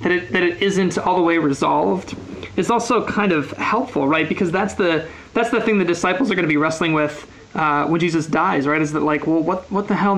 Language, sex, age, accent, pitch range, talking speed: English, male, 20-39, American, 150-180 Hz, 250 wpm